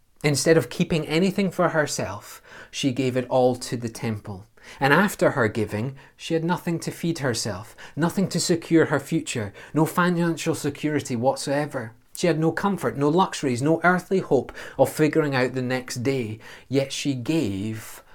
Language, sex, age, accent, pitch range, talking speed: English, male, 30-49, British, 125-170 Hz, 165 wpm